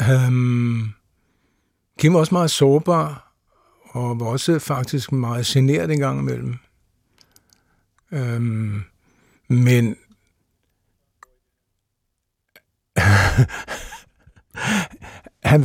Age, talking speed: 60-79, 70 wpm